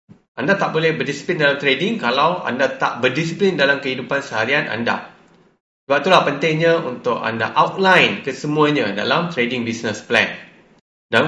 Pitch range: 140-180 Hz